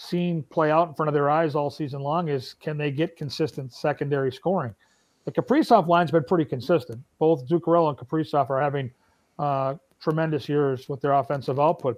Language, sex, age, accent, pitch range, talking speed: English, male, 40-59, American, 145-180 Hz, 185 wpm